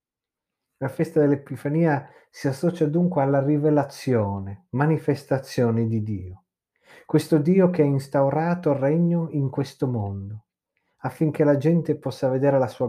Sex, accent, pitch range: male, native, 125-160 Hz